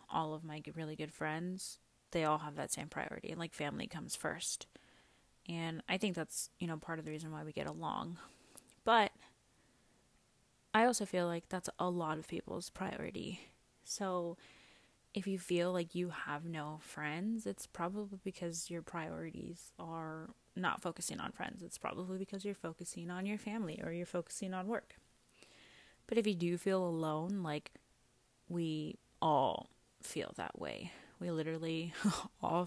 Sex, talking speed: female, 165 wpm